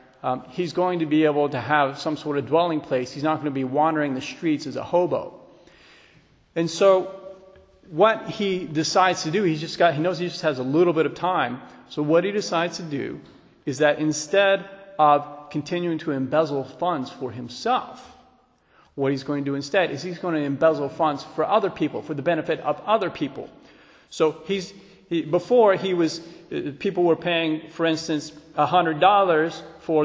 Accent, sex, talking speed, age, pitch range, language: American, male, 185 wpm, 40-59, 150-180 Hz, English